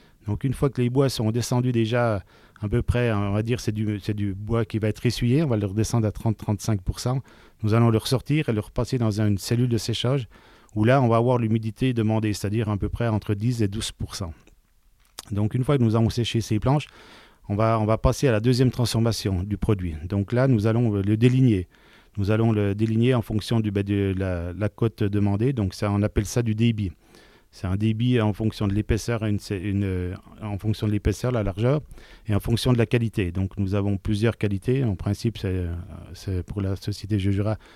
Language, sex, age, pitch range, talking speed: French, male, 40-59, 100-120 Hz, 220 wpm